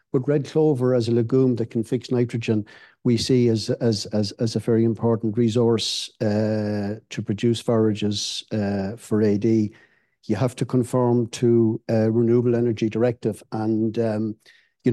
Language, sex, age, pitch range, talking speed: English, male, 60-79, 115-130 Hz, 155 wpm